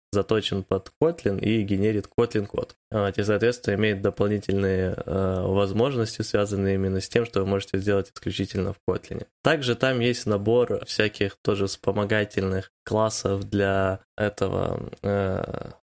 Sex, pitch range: male, 100-110 Hz